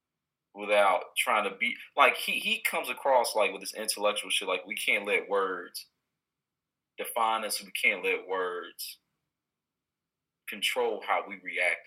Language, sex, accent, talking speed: English, male, American, 145 wpm